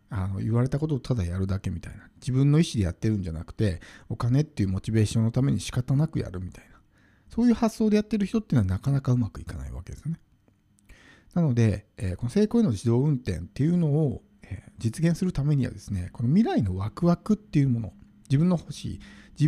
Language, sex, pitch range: Japanese, male, 100-150 Hz